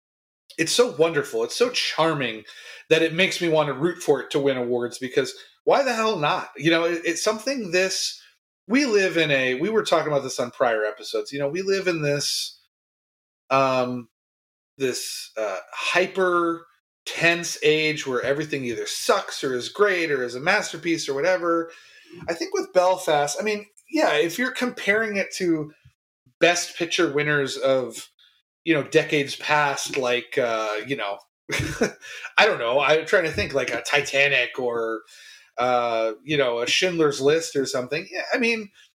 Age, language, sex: 30-49, English, male